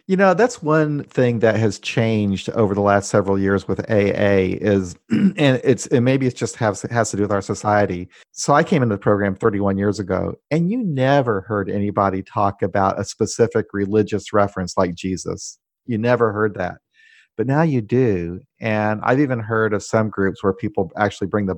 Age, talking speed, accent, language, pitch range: 40-59, 200 wpm, American, English, 95-115 Hz